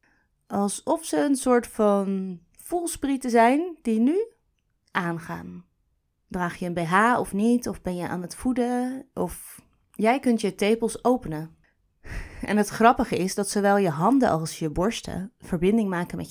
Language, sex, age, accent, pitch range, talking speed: Dutch, female, 30-49, Dutch, 170-240 Hz, 155 wpm